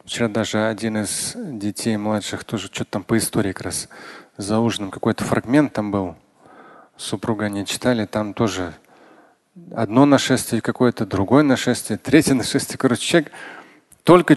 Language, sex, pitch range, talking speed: Russian, male, 110-140 Hz, 140 wpm